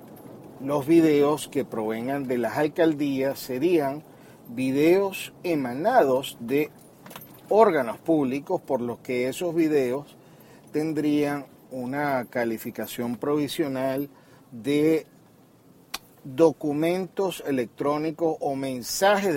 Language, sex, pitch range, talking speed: Spanish, male, 125-160 Hz, 85 wpm